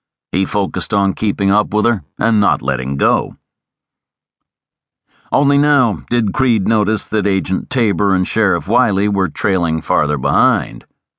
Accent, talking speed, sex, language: American, 140 wpm, male, English